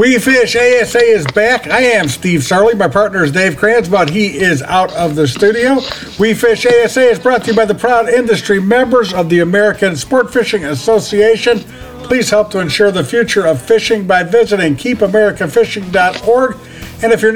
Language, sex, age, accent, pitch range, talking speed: English, male, 60-79, American, 185-225 Hz, 185 wpm